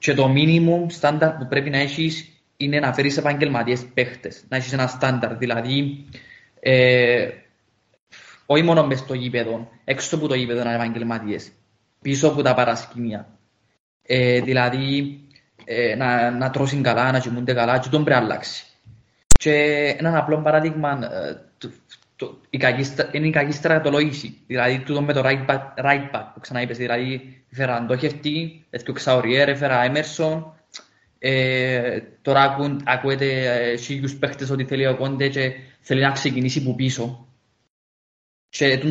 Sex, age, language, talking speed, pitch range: male, 20-39, Greek, 105 wpm, 125-145 Hz